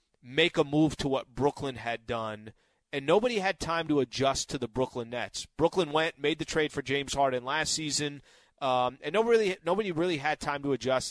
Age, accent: 30-49, American